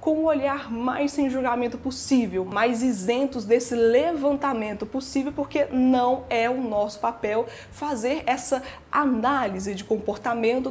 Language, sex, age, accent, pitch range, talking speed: Portuguese, female, 20-39, Brazilian, 225-275 Hz, 130 wpm